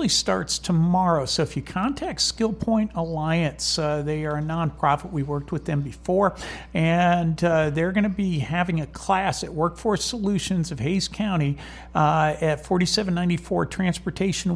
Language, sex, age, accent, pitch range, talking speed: English, male, 50-69, American, 150-185 Hz, 155 wpm